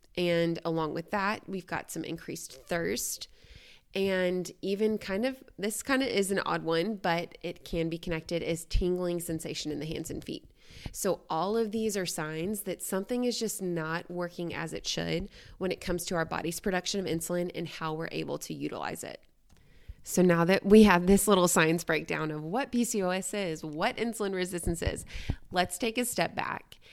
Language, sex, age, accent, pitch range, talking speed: English, female, 20-39, American, 165-205 Hz, 190 wpm